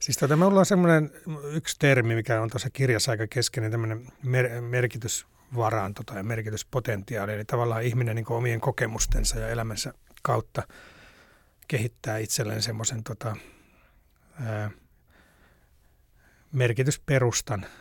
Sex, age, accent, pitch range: male, 30-49, native, 110-135 Hz